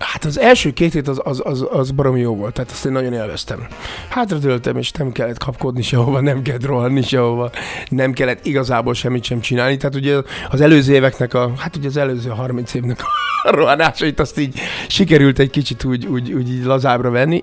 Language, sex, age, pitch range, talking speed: Hungarian, male, 30-49, 125-140 Hz, 200 wpm